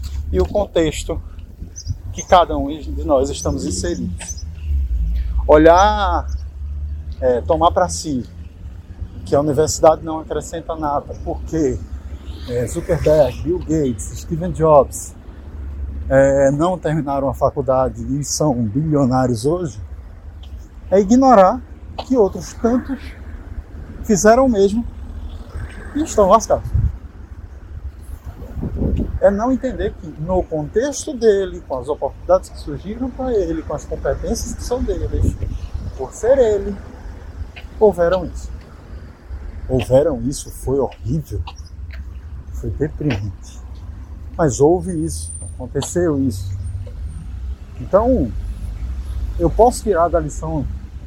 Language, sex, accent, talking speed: Portuguese, male, Brazilian, 105 wpm